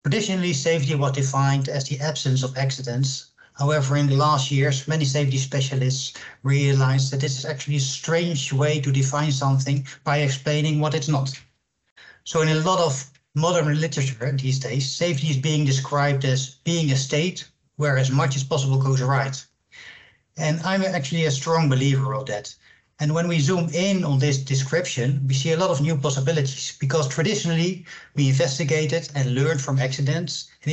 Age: 60-79